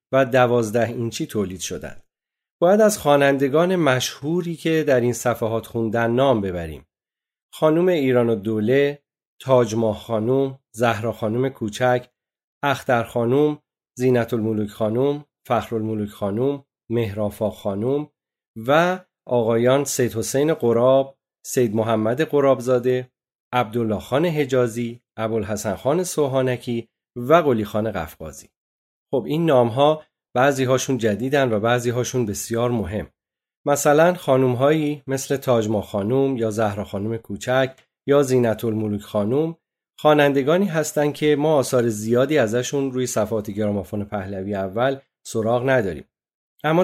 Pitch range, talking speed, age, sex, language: 110-135 Hz, 120 wpm, 40-59, male, Persian